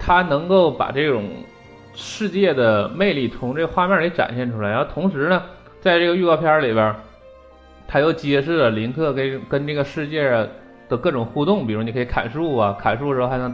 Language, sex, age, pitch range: Chinese, male, 20-39, 110-160 Hz